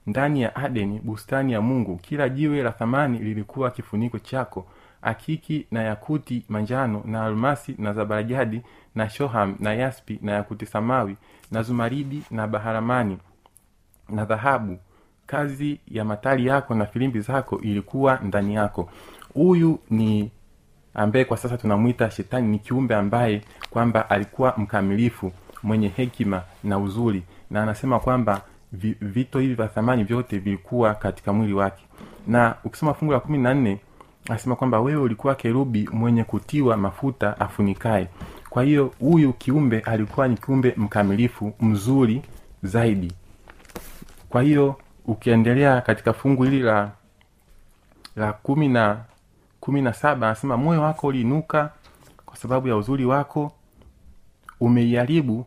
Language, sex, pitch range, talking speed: Swahili, male, 105-130 Hz, 125 wpm